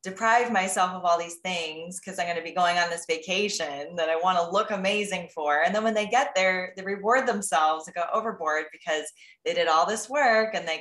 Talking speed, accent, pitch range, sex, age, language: 235 wpm, American, 170-225 Hz, female, 20-39, English